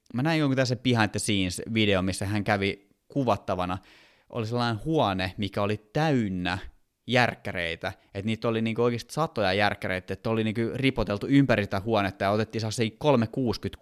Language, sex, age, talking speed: Finnish, male, 20-39, 155 wpm